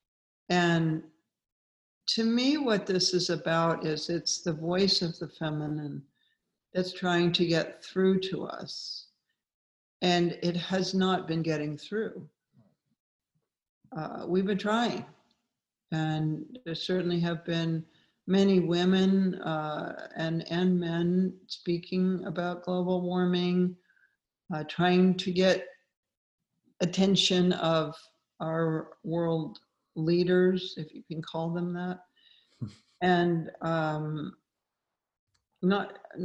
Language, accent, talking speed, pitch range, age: English, American, 110 wpm, 160-185 Hz, 60-79